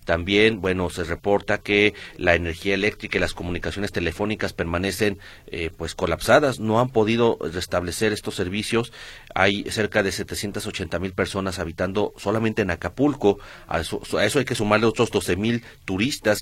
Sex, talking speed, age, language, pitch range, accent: male, 155 wpm, 40-59, Spanish, 90-110 Hz, Mexican